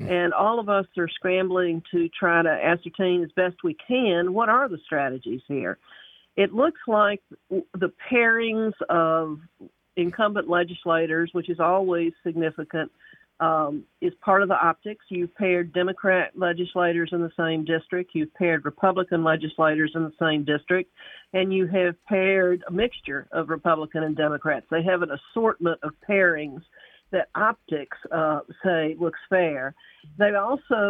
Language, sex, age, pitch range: English, female, 50-69, 165-200 Hz